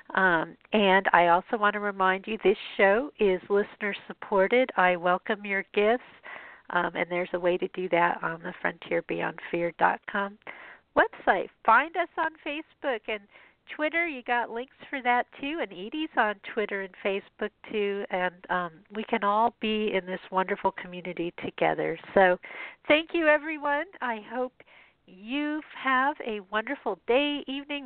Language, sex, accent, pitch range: English, female, American, 195-255 Hz